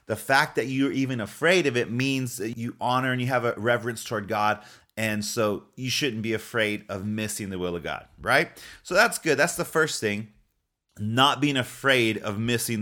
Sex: male